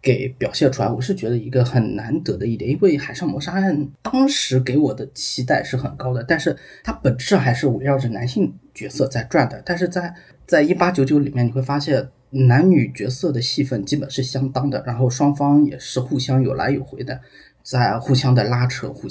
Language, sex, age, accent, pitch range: Chinese, male, 20-39, native, 125-145 Hz